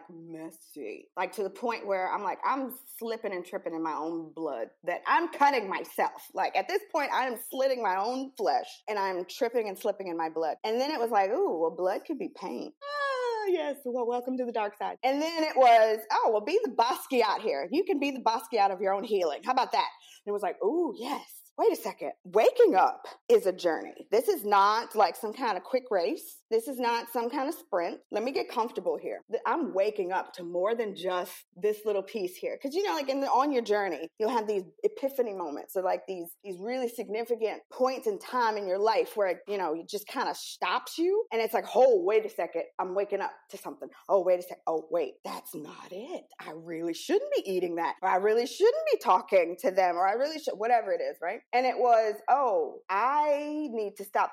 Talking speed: 235 wpm